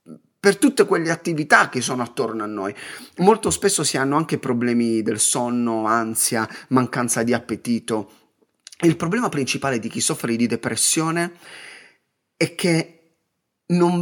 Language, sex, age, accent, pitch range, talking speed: Italian, male, 30-49, native, 135-210 Hz, 135 wpm